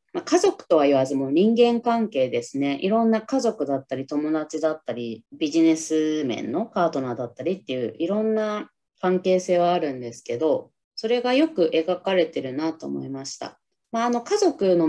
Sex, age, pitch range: female, 20-39, 145-230 Hz